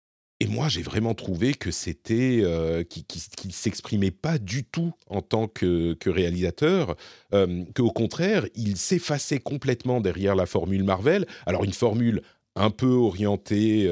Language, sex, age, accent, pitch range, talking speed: French, male, 40-59, French, 85-110 Hz, 150 wpm